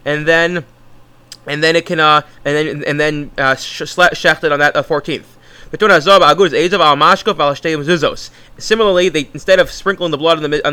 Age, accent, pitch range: 30-49, American, 145-180 Hz